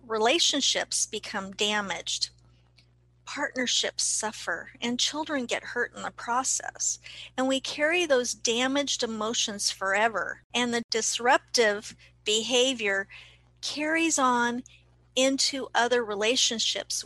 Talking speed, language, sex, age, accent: 100 wpm, English, female, 50-69, American